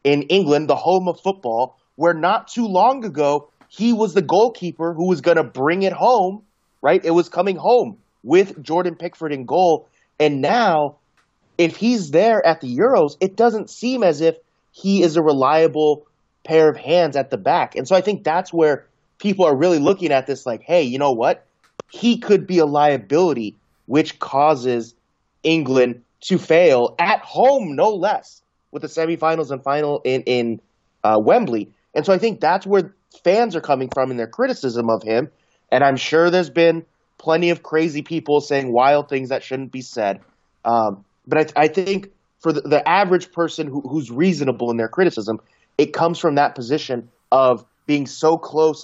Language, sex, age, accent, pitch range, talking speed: English, male, 30-49, American, 130-175 Hz, 185 wpm